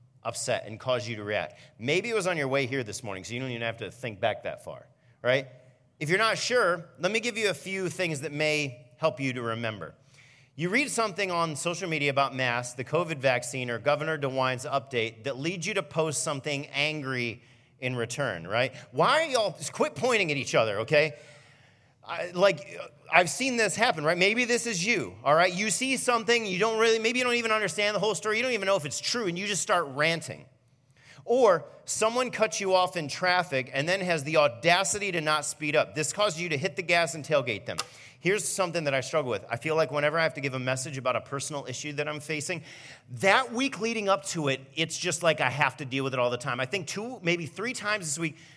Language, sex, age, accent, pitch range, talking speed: English, male, 40-59, American, 130-190 Hz, 235 wpm